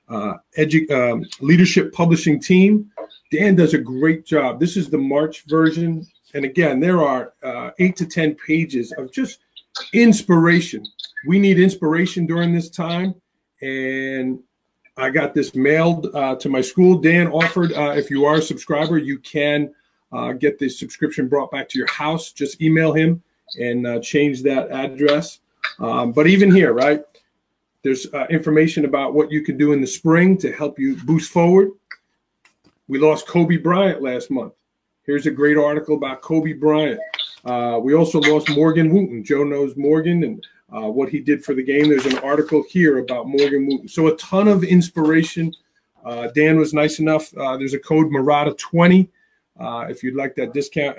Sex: male